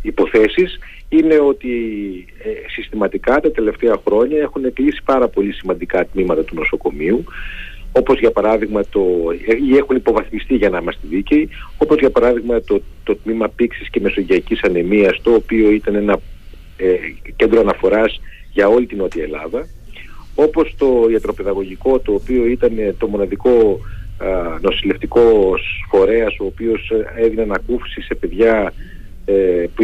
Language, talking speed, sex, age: Greek, 135 wpm, male, 40-59